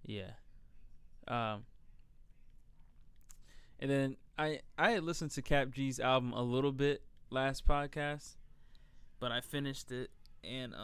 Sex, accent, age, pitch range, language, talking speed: male, American, 20-39, 115-135 Hz, English, 120 wpm